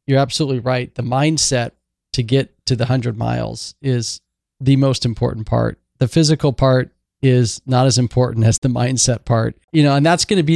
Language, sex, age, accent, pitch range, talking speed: English, male, 40-59, American, 115-135 Hz, 195 wpm